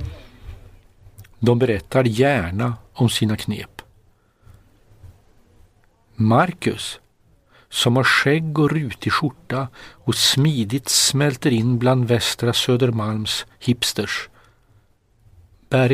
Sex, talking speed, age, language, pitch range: male, 85 wpm, 50-69, Swedish, 100-130 Hz